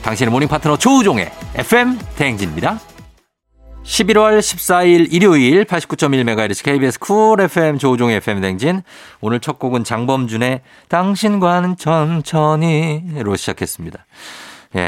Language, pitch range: Korean, 110-160 Hz